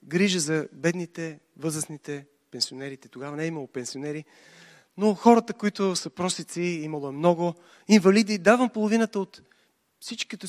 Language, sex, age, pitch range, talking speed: Bulgarian, male, 30-49, 160-230 Hz, 125 wpm